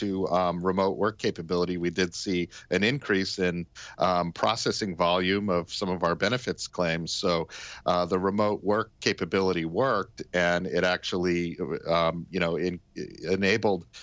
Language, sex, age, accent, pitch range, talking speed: English, male, 50-69, American, 90-105 Hz, 135 wpm